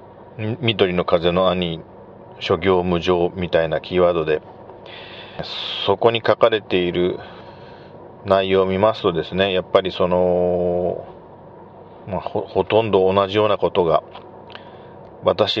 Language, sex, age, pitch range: Japanese, male, 40-59, 95-130 Hz